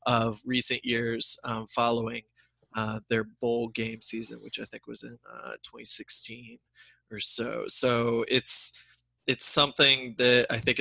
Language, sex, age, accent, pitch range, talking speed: English, male, 20-39, American, 115-135 Hz, 145 wpm